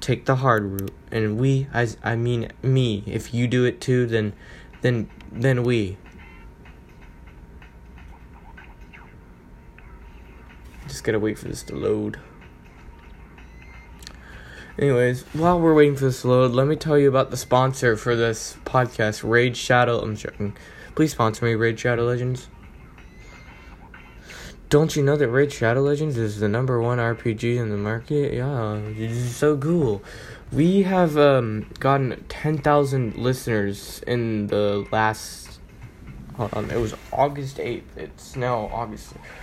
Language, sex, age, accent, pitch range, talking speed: English, male, 10-29, American, 100-130 Hz, 140 wpm